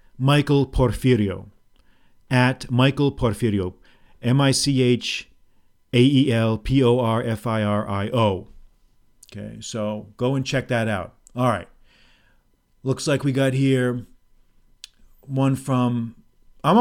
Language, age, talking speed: English, 40-59, 80 wpm